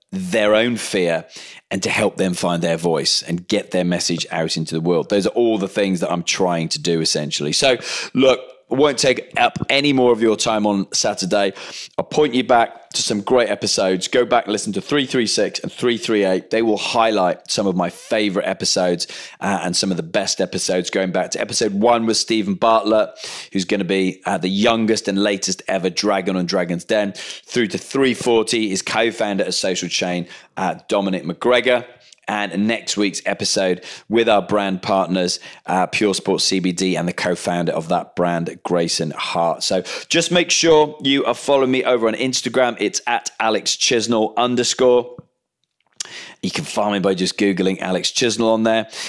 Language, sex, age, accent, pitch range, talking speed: English, male, 30-49, British, 95-125 Hz, 185 wpm